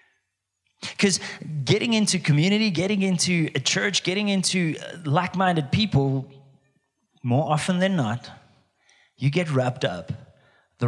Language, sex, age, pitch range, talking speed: English, male, 30-49, 125-155 Hz, 115 wpm